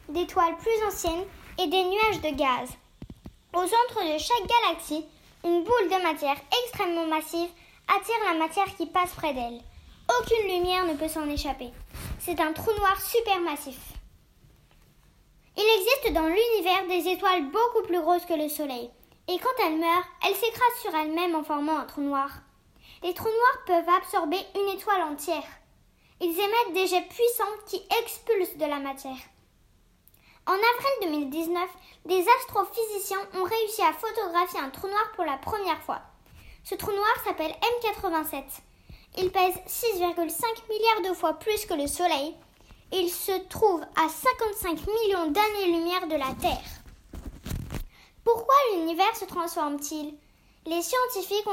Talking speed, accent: 150 wpm, French